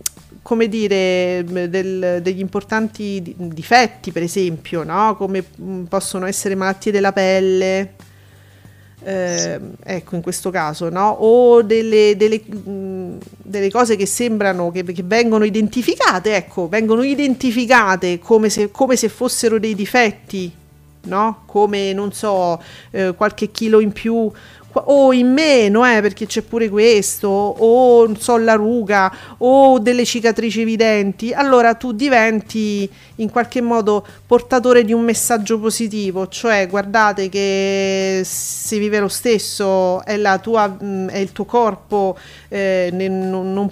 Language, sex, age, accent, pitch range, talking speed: Italian, female, 40-59, native, 190-225 Hz, 130 wpm